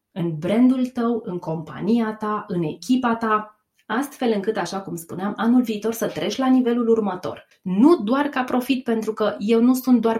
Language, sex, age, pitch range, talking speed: Romanian, female, 20-39, 175-230 Hz, 180 wpm